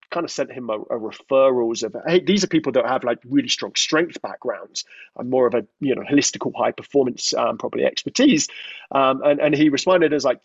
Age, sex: 30-49, male